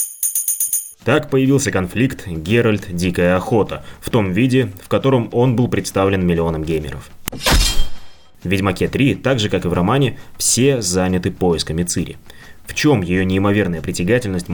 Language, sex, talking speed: Russian, male, 140 wpm